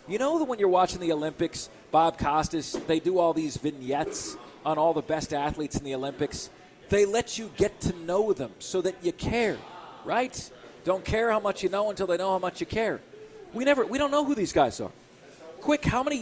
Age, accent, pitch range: 40-59, American, 170-220 Hz